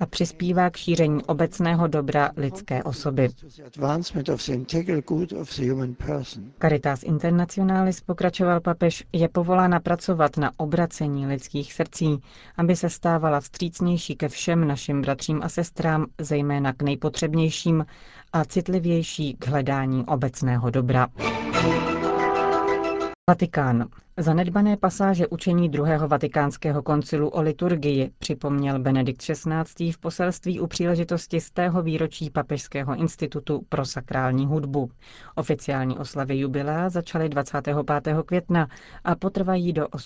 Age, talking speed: 30-49, 105 wpm